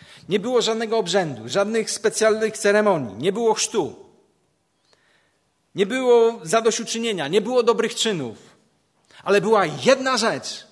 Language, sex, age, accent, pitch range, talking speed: Polish, male, 40-59, native, 135-200 Hz, 120 wpm